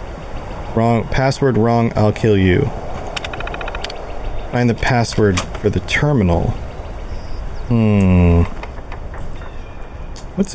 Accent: American